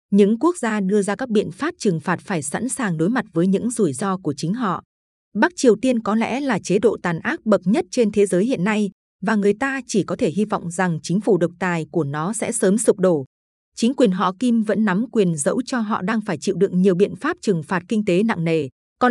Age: 20-39